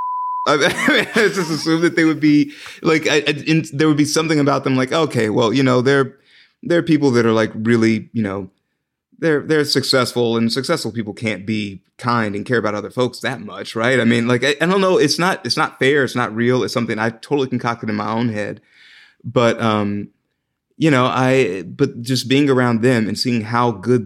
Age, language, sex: 30-49, English, male